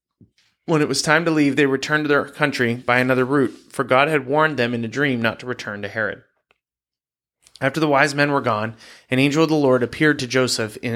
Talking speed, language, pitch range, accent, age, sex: 230 wpm, English, 115-140 Hz, American, 30-49, male